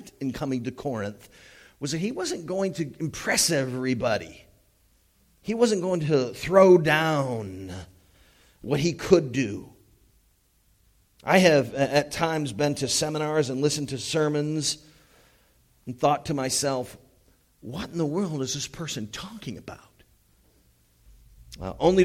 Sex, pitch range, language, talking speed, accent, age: male, 115-155 Hz, English, 130 wpm, American, 40-59